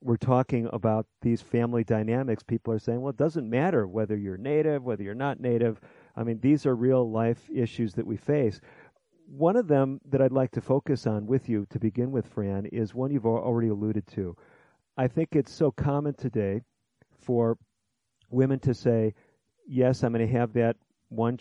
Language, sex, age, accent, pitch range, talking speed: English, male, 40-59, American, 110-130 Hz, 190 wpm